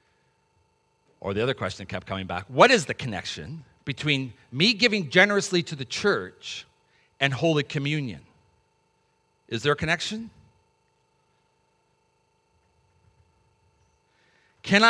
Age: 50-69